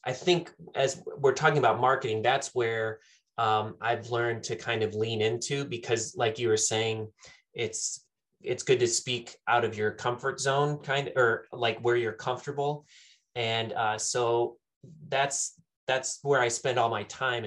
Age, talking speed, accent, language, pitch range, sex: 20-39, 170 wpm, American, English, 110-125 Hz, male